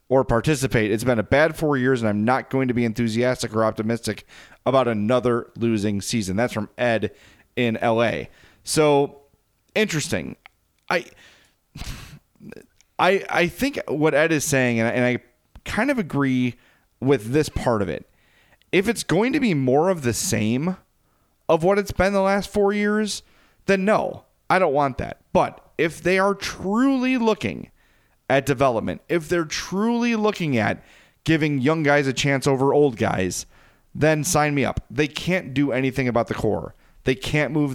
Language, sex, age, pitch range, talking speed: English, male, 30-49, 115-155 Hz, 170 wpm